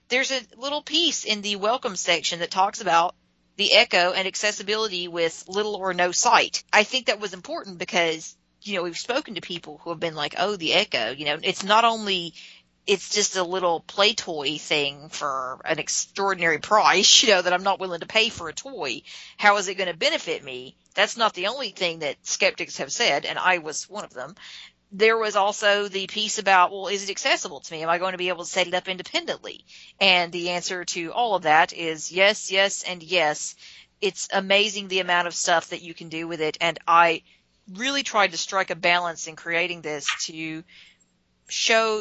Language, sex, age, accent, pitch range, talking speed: English, female, 40-59, American, 170-215 Hz, 210 wpm